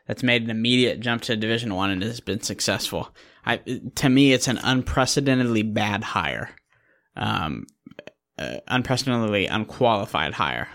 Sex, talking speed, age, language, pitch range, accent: male, 135 wpm, 20-39, English, 105-130 Hz, American